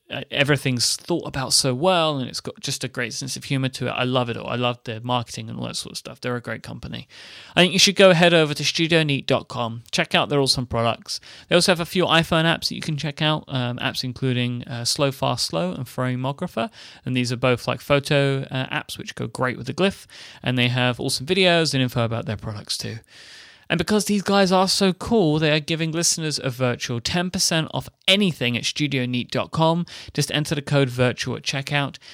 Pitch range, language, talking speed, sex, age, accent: 120-165 Hz, English, 220 wpm, male, 30-49, British